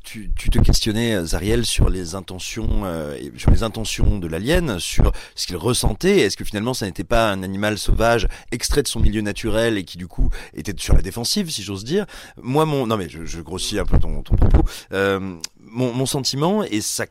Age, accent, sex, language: 30-49, French, male, French